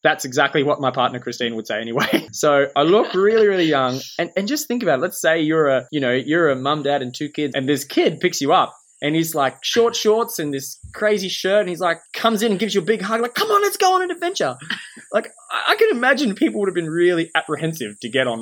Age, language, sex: 20-39, English, male